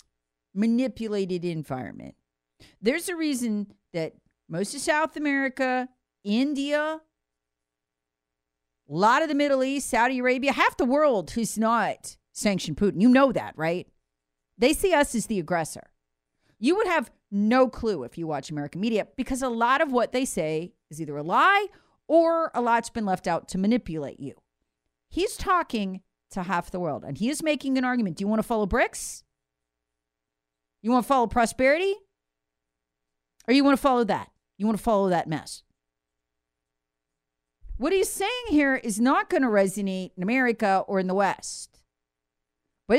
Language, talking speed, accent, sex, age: English, 165 wpm, American, female, 40-59